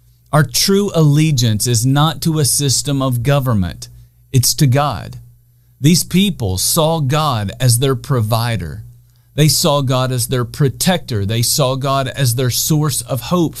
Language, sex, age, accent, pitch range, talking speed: English, male, 40-59, American, 120-155 Hz, 150 wpm